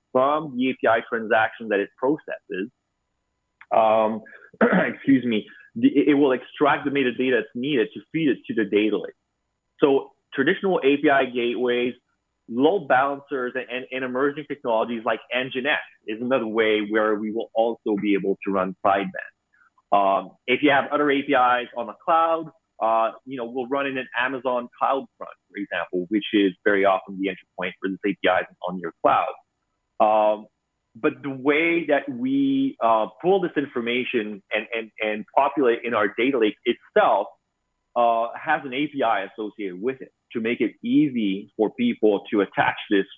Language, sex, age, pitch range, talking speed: English, male, 30-49, 105-140 Hz, 165 wpm